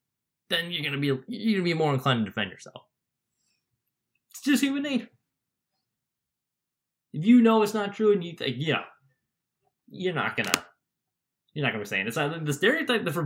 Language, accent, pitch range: English, American, 125-170 Hz